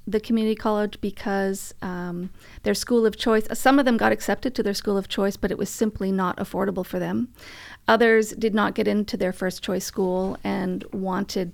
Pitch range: 190-220 Hz